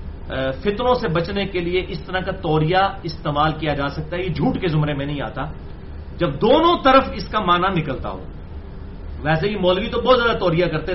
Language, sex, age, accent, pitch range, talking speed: English, male, 40-59, Indian, 145-215 Hz, 205 wpm